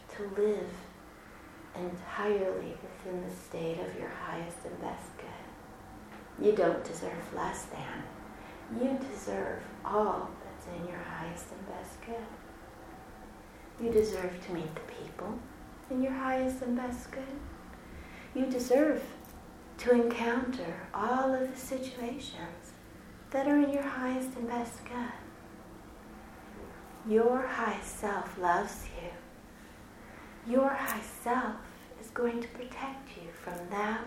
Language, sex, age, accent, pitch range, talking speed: English, female, 40-59, American, 195-260 Hz, 120 wpm